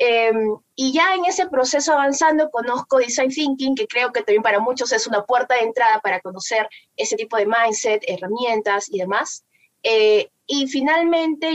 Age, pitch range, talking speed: 20-39, 205-285 Hz, 170 wpm